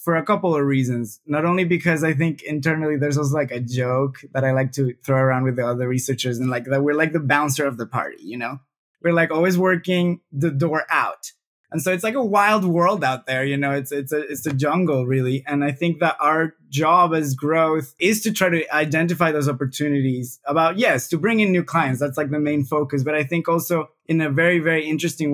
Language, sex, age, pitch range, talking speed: English, male, 20-39, 140-165 Hz, 235 wpm